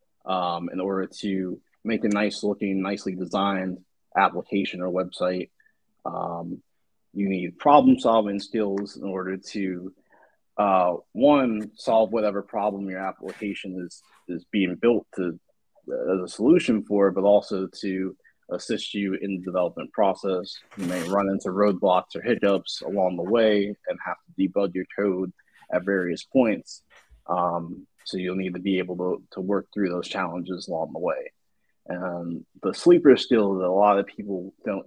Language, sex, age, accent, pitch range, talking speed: English, male, 30-49, American, 95-105 Hz, 160 wpm